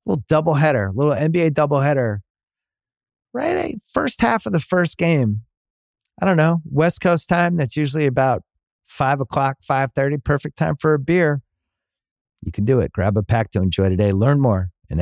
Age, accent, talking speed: 30-49, American, 175 wpm